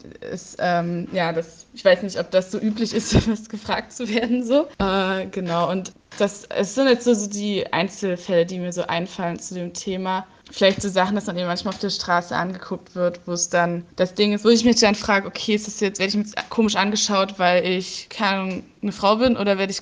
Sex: female